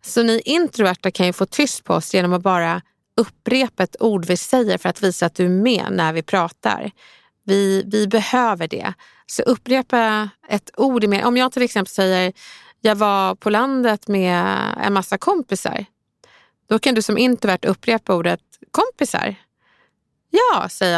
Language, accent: English, Swedish